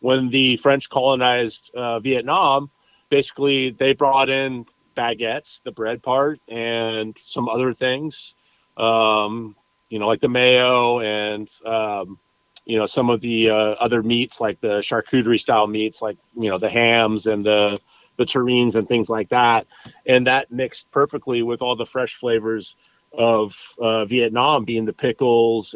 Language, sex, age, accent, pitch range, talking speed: English, male, 30-49, American, 110-130 Hz, 155 wpm